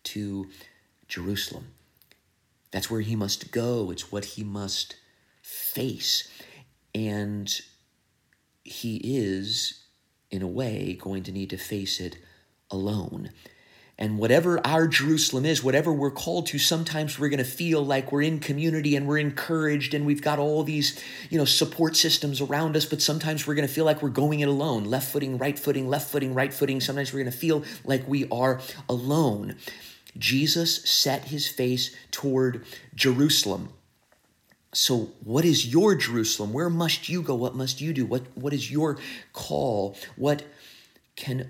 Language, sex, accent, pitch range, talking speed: English, male, American, 115-150 Hz, 160 wpm